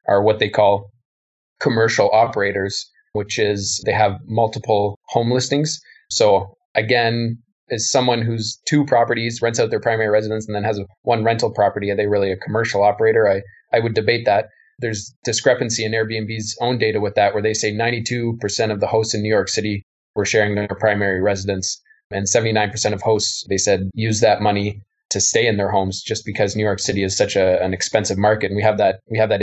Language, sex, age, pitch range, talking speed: English, male, 20-39, 100-115 Hz, 200 wpm